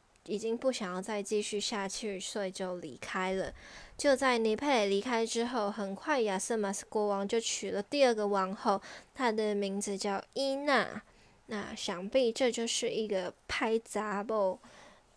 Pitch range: 200-235 Hz